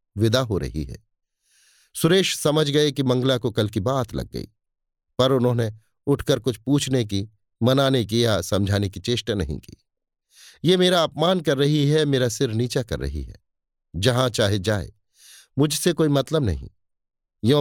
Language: Hindi